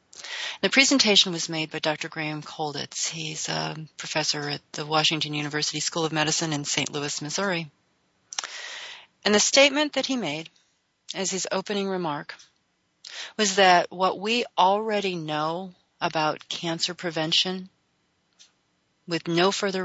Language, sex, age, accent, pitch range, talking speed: English, female, 40-59, American, 155-200 Hz, 135 wpm